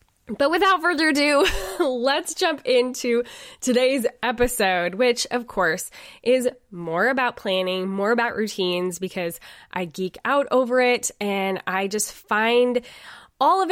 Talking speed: 135 wpm